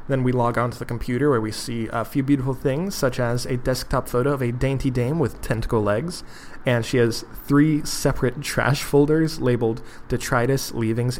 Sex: male